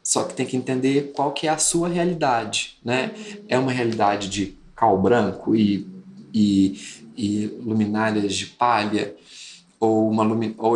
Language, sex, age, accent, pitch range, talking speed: Portuguese, male, 20-39, Brazilian, 110-150 Hz, 145 wpm